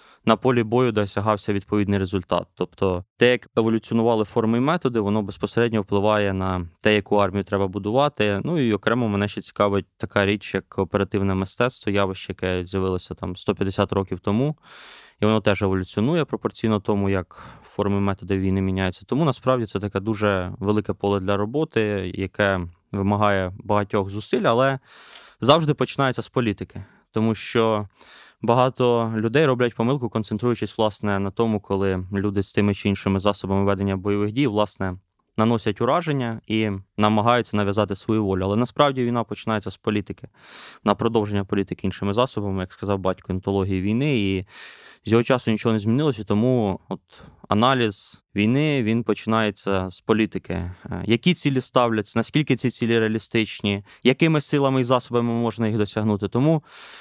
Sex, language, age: male, Ukrainian, 20-39